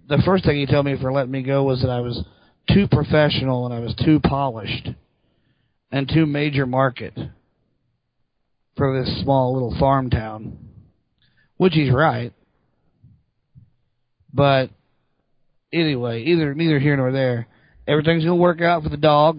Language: English